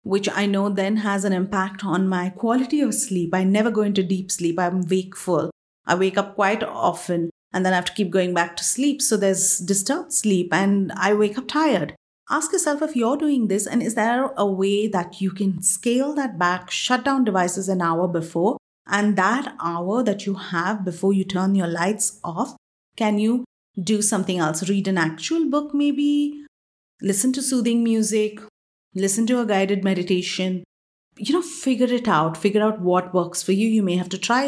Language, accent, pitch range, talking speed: English, Indian, 180-230 Hz, 200 wpm